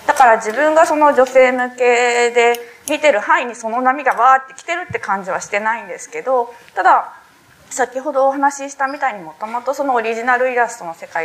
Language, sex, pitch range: Japanese, female, 195-270 Hz